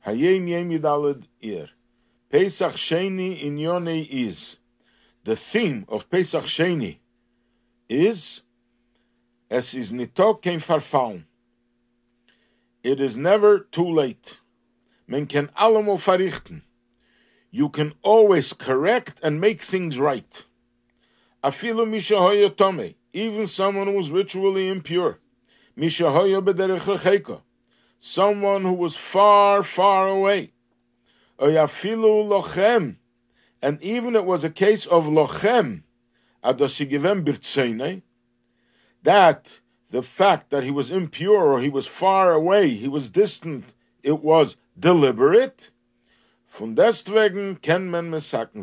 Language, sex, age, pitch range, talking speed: English, male, 60-79, 125-195 Hz, 95 wpm